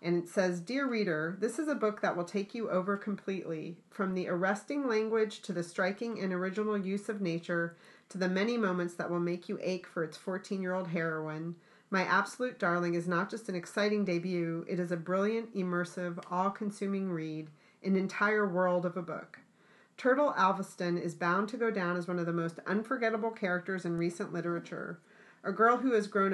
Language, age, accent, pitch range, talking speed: English, 40-59, American, 175-210 Hz, 200 wpm